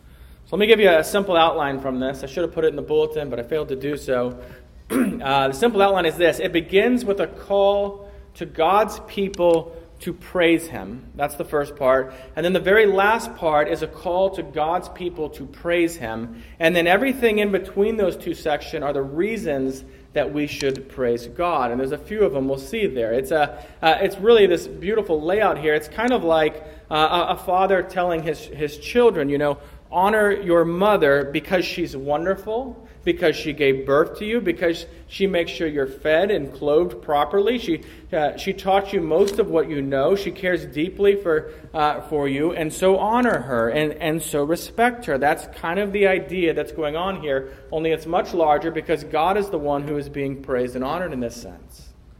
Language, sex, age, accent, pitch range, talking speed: English, male, 30-49, American, 140-190 Hz, 210 wpm